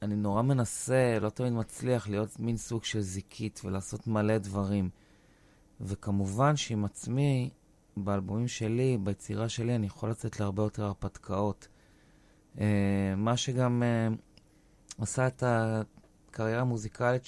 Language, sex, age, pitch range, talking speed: Hebrew, male, 30-49, 100-120 Hz, 115 wpm